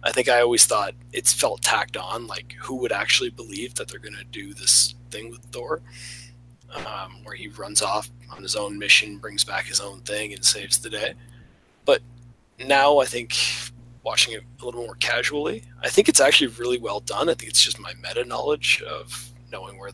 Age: 20-39